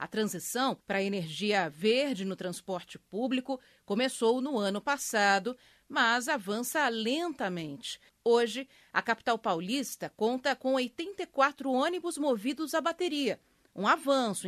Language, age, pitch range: Portuguese, 40-59, 200-270 Hz